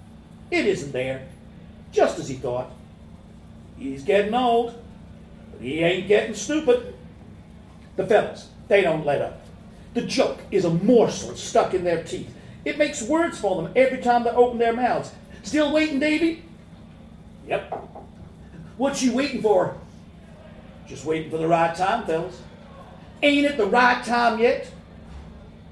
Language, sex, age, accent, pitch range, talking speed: English, male, 50-69, American, 170-250 Hz, 145 wpm